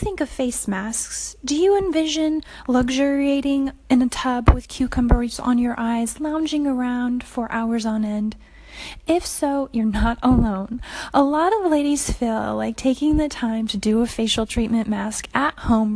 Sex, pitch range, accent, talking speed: female, 225-275 Hz, American, 165 wpm